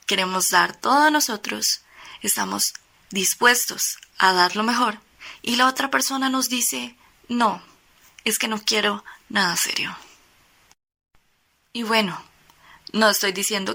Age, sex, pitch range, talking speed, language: 20-39, female, 190-235 Hz, 125 wpm, Spanish